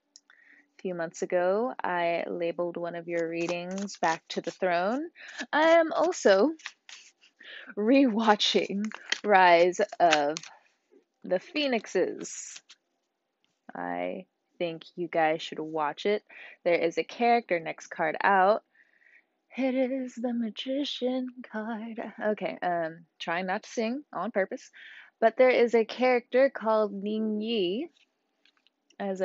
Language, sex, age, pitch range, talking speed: English, female, 20-39, 175-260 Hz, 115 wpm